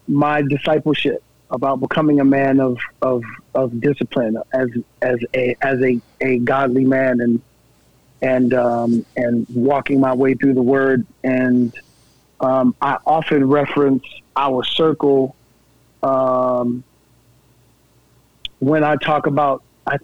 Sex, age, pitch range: male, 40-59, 125-145 Hz